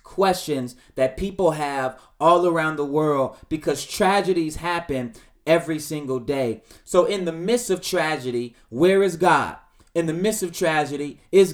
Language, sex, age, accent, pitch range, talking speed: English, male, 30-49, American, 155-195 Hz, 150 wpm